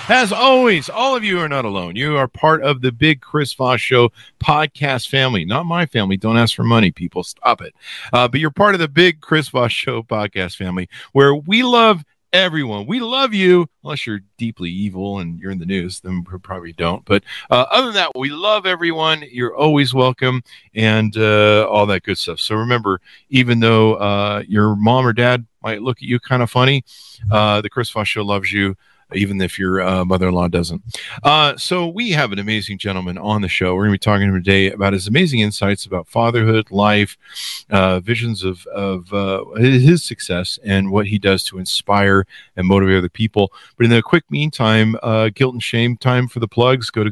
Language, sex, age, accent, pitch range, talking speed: English, male, 50-69, American, 100-135 Hz, 210 wpm